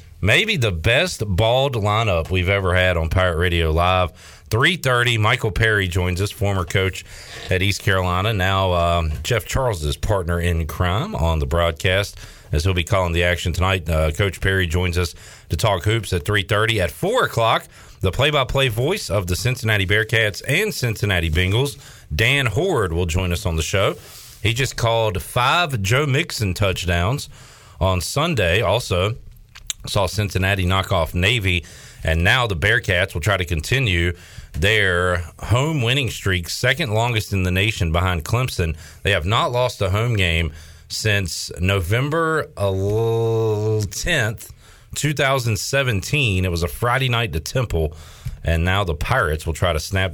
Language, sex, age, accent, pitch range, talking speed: English, male, 40-59, American, 85-115 Hz, 155 wpm